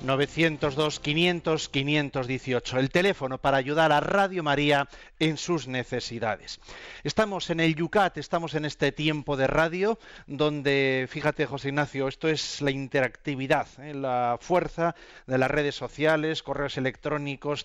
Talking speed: 120 wpm